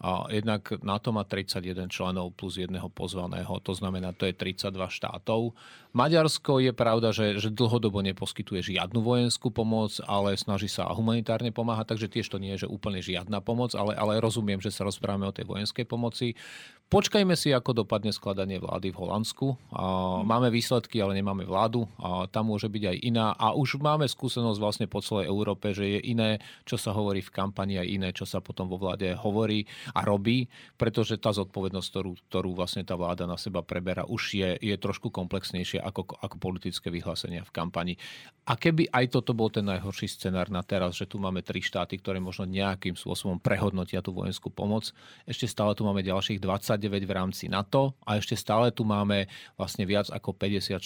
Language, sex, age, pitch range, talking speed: Czech, male, 40-59, 95-110 Hz, 190 wpm